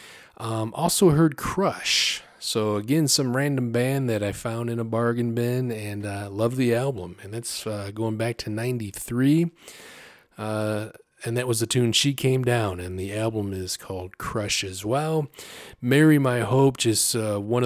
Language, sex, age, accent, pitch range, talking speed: English, male, 30-49, American, 105-130 Hz, 175 wpm